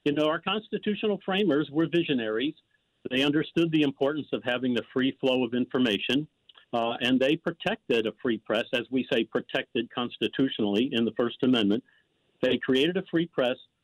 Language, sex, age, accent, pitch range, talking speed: English, male, 50-69, American, 120-150 Hz, 170 wpm